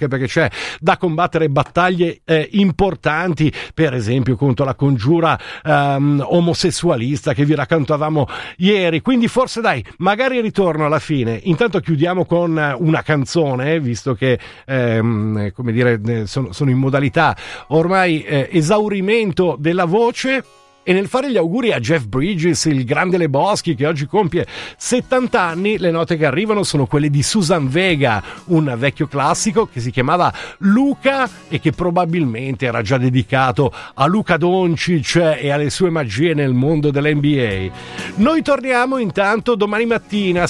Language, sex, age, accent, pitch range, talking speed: Italian, male, 50-69, native, 140-180 Hz, 145 wpm